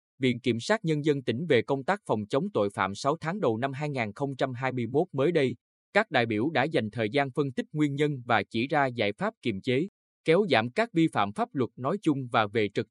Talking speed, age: 230 wpm, 20-39